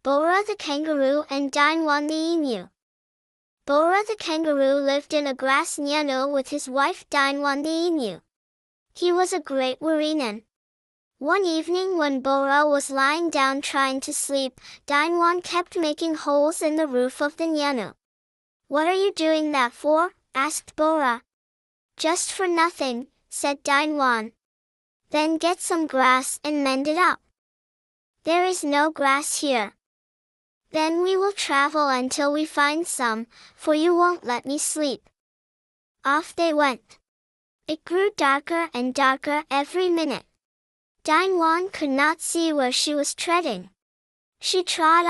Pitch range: 275-330 Hz